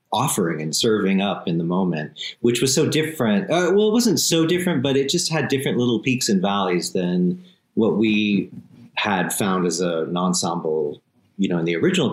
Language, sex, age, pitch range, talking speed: English, male, 40-59, 90-140 Hz, 195 wpm